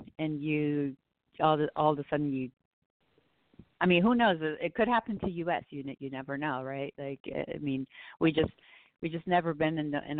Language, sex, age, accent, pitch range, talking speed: English, female, 40-59, American, 135-160 Hz, 205 wpm